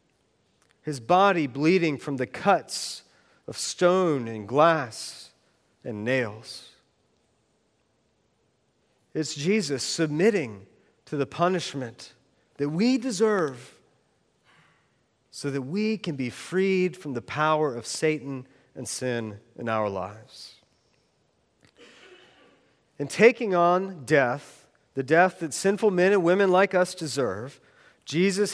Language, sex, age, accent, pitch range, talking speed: English, male, 40-59, American, 145-235 Hz, 110 wpm